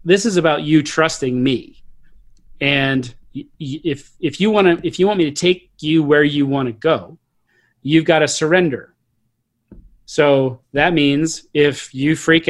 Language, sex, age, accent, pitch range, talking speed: English, male, 40-59, American, 130-155 Hz, 160 wpm